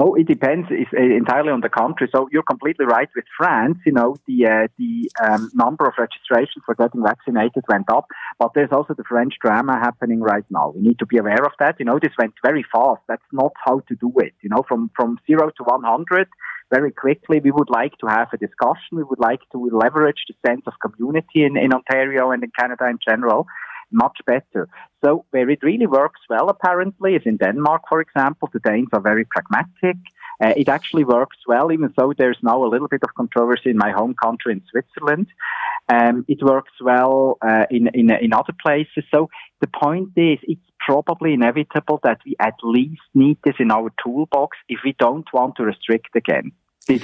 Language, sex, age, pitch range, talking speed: English, male, 30-49, 120-155 Hz, 205 wpm